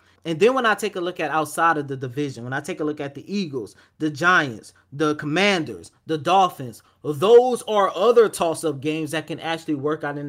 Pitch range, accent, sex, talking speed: 150-190 Hz, American, male, 215 wpm